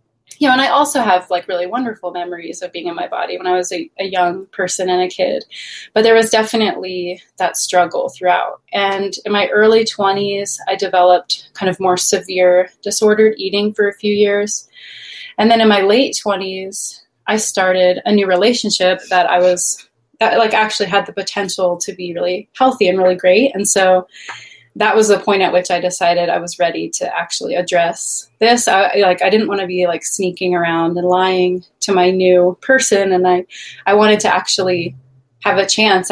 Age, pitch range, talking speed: 20-39, 180-210 Hz, 195 wpm